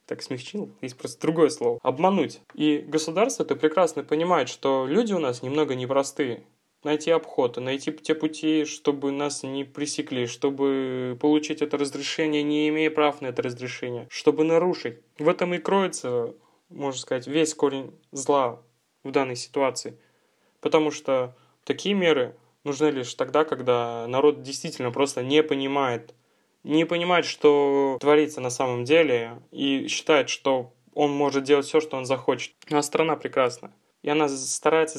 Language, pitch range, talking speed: Russian, 135-155 Hz, 150 wpm